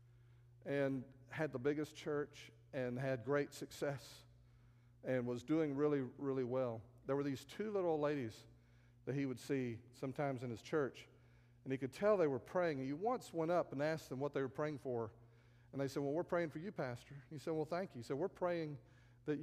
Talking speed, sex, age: 205 wpm, male, 50-69